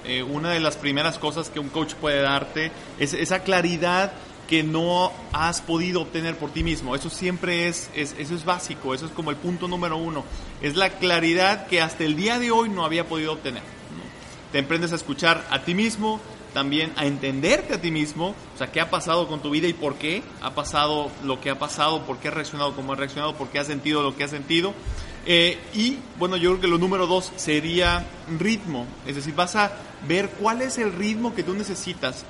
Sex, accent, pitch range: male, Mexican, 150-180 Hz